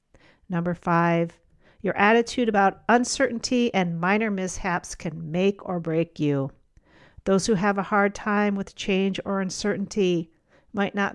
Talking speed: 140 wpm